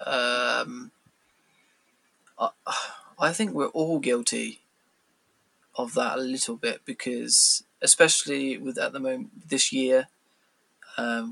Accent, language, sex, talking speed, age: British, English, male, 105 wpm, 20-39